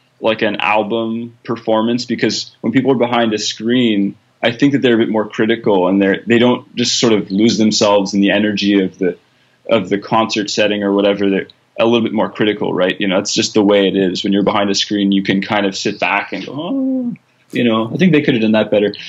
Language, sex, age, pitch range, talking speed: English, male, 20-39, 100-120 Hz, 240 wpm